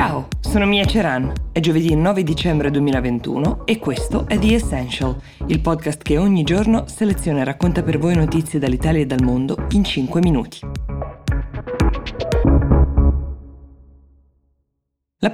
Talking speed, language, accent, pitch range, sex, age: 130 wpm, Italian, native, 135-170 Hz, female, 20-39